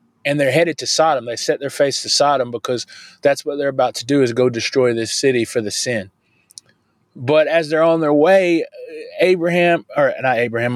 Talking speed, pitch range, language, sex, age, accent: 200 wpm, 130-155 Hz, English, male, 30-49, American